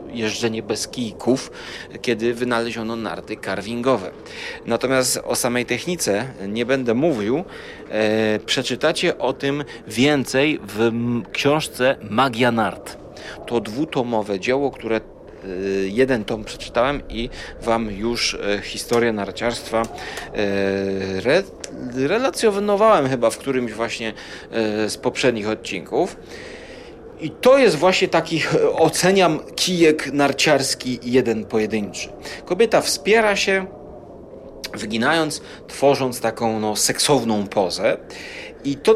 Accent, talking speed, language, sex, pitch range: native, 95 wpm, Polish, male, 110-160 Hz